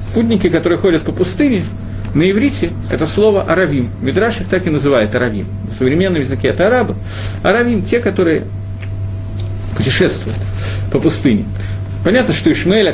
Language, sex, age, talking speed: Russian, male, 40-59, 130 wpm